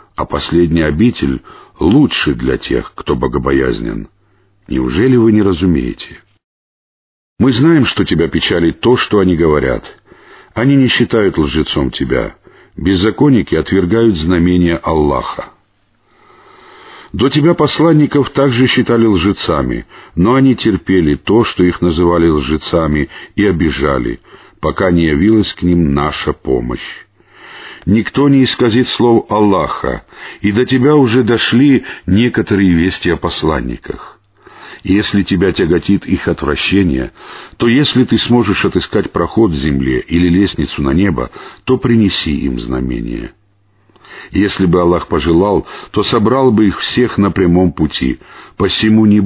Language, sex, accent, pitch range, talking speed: Russian, male, native, 85-115 Hz, 125 wpm